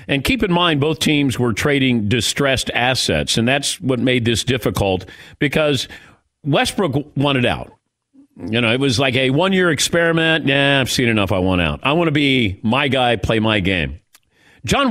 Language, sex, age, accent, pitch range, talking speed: English, male, 50-69, American, 120-165 Hz, 180 wpm